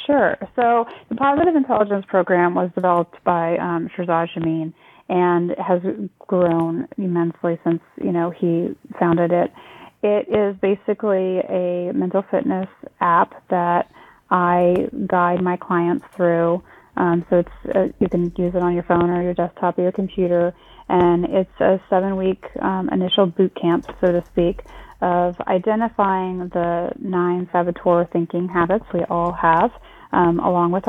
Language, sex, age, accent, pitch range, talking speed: English, female, 30-49, American, 175-195 Hz, 150 wpm